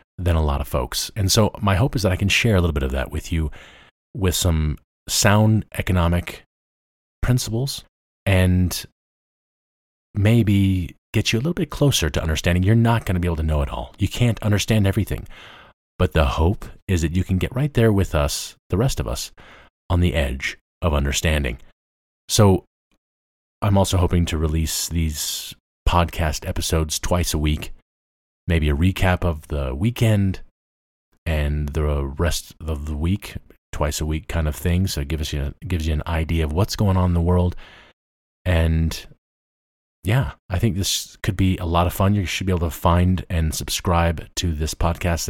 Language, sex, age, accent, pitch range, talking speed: English, male, 30-49, American, 75-95 Hz, 180 wpm